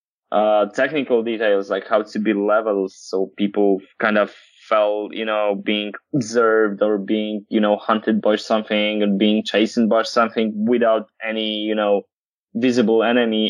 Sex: male